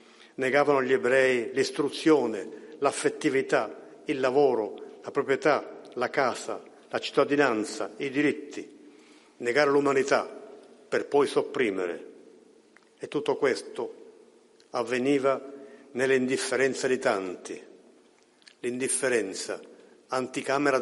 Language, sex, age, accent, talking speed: Italian, male, 50-69, native, 85 wpm